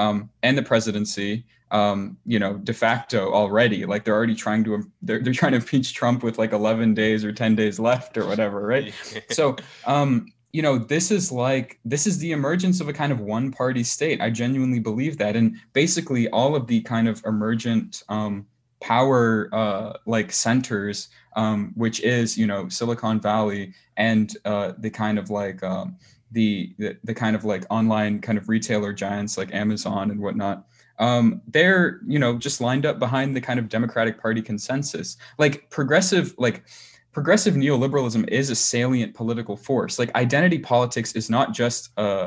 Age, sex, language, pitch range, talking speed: 20-39, male, English, 105-130 Hz, 180 wpm